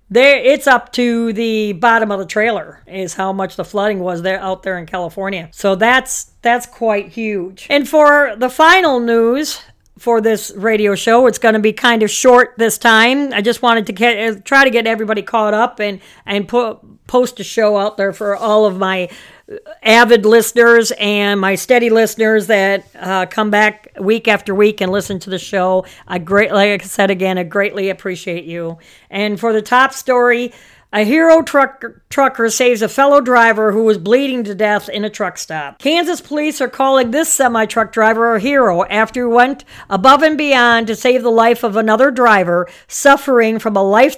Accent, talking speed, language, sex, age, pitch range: American, 195 wpm, English, female, 50-69, 205-250 Hz